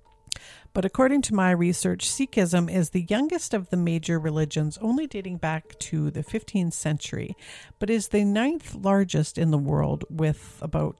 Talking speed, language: 165 wpm, English